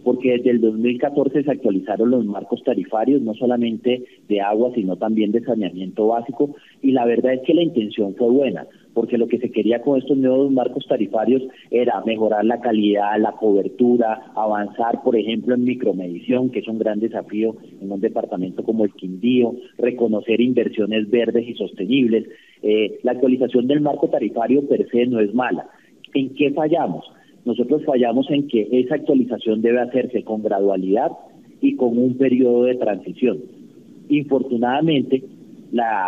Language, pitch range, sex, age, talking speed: Spanish, 110-130 Hz, male, 30-49, 160 wpm